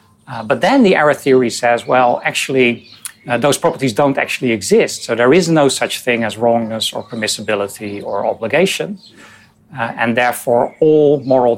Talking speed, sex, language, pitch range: 165 wpm, male, English, 115-145 Hz